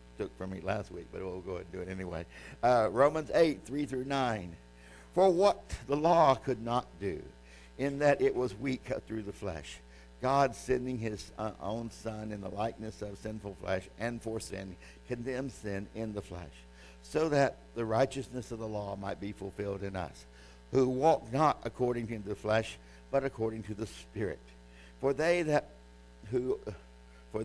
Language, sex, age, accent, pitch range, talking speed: English, male, 60-79, American, 85-125 Hz, 180 wpm